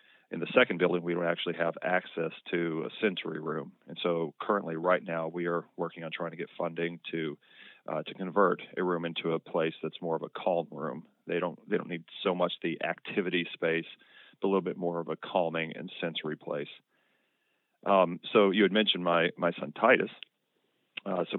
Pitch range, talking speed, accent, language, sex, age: 85-95 Hz, 205 wpm, American, English, male, 40-59